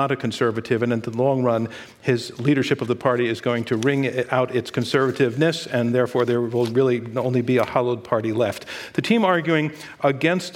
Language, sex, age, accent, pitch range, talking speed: English, male, 50-69, American, 125-145 Hz, 200 wpm